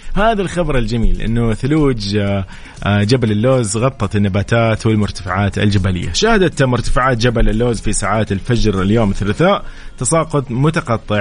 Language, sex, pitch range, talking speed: Arabic, male, 105-130 Hz, 120 wpm